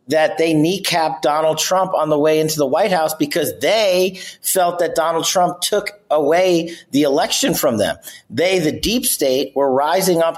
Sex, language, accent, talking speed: male, English, American, 180 wpm